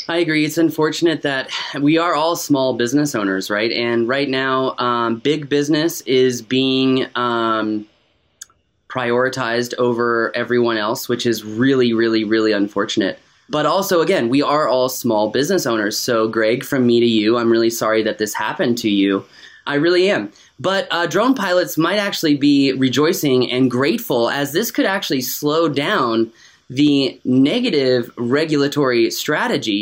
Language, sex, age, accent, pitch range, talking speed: English, male, 20-39, American, 120-155 Hz, 155 wpm